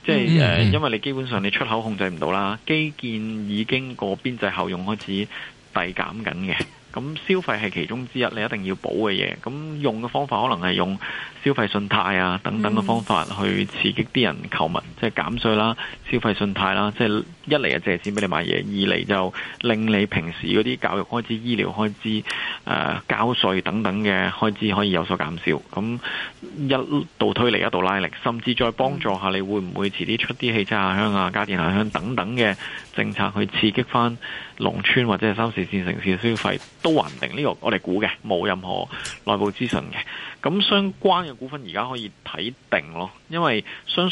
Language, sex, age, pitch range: Chinese, male, 20-39, 95-125 Hz